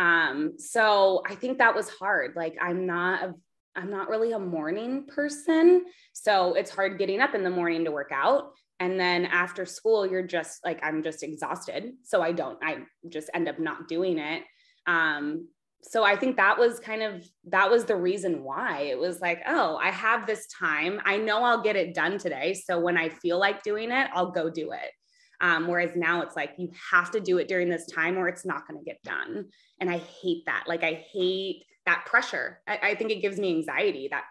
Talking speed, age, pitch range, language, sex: 215 wpm, 20-39, 175-250 Hz, English, female